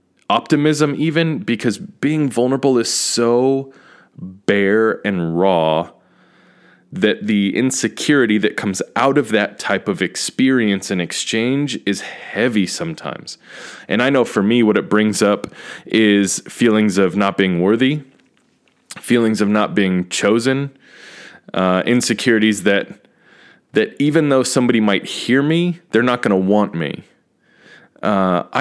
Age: 20-39